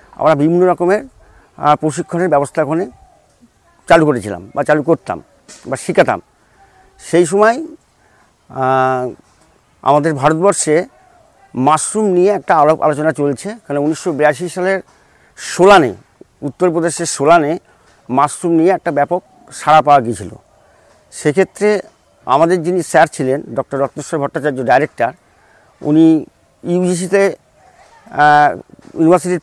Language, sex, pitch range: Bengali, male, 145-175 Hz